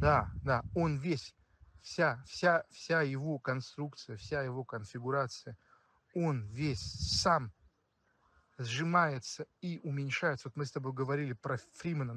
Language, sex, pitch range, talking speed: Russian, male, 105-145 Hz, 125 wpm